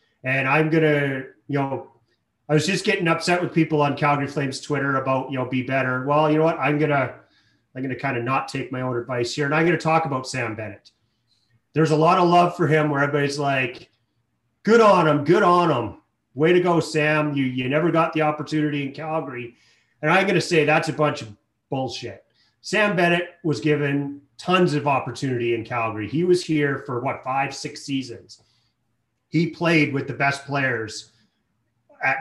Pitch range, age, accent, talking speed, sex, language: 125-160 Hz, 30-49, American, 205 wpm, male, English